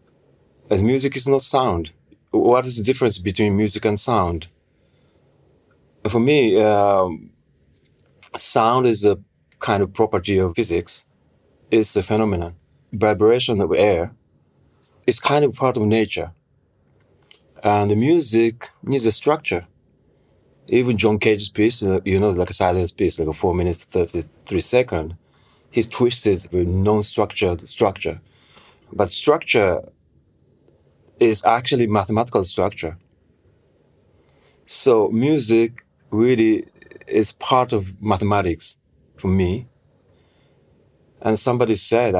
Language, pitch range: English, 95-120 Hz